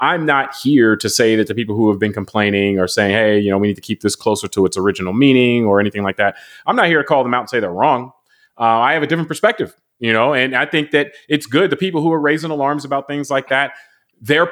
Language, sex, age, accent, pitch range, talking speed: English, male, 30-49, American, 110-140 Hz, 275 wpm